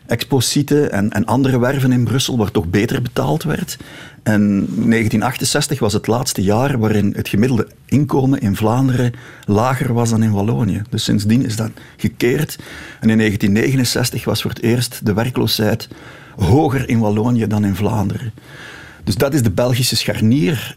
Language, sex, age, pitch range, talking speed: Dutch, male, 60-79, 105-130 Hz, 155 wpm